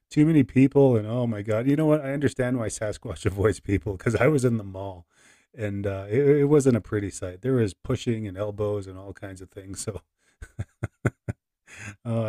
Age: 30-49